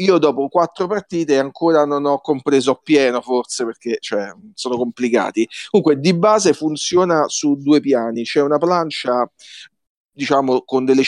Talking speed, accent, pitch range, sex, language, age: 145 wpm, native, 135-190 Hz, male, Italian, 40-59